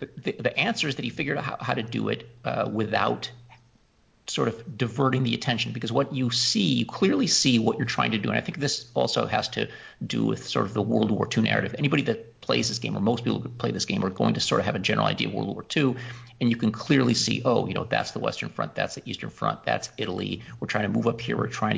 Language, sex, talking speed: English, male, 275 wpm